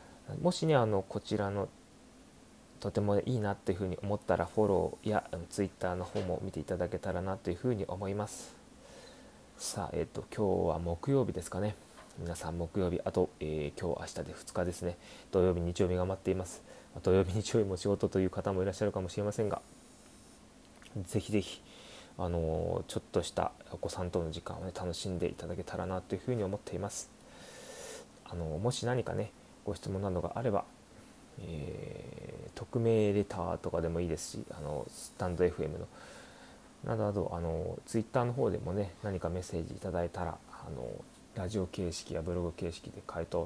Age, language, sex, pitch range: 20-39, Japanese, male, 90-110 Hz